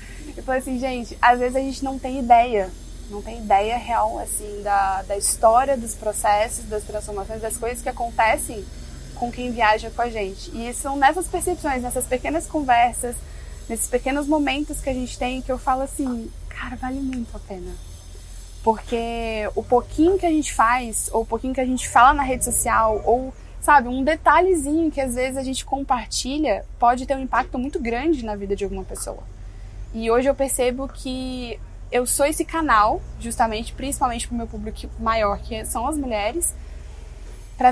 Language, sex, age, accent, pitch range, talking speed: Portuguese, female, 20-39, Brazilian, 220-270 Hz, 180 wpm